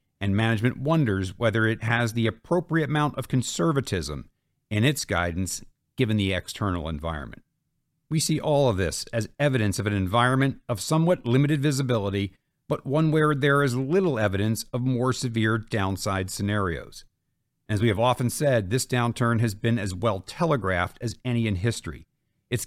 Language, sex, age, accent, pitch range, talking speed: English, male, 50-69, American, 100-135 Hz, 160 wpm